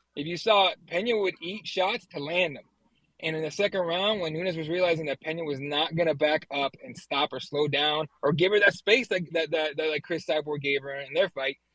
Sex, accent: male, American